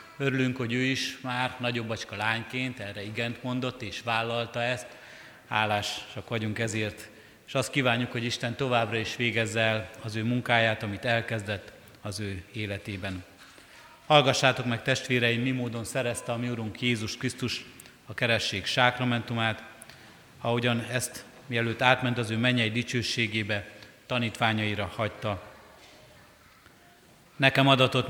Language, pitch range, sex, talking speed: Hungarian, 110-125 Hz, male, 125 wpm